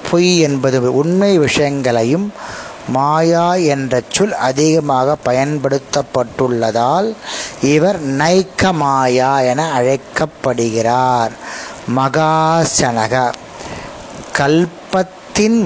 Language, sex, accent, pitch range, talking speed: Tamil, male, native, 130-175 Hz, 50 wpm